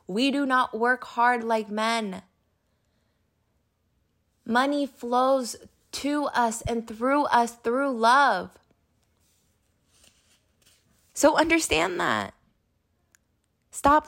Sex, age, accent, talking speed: female, 20-39, American, 85 wpm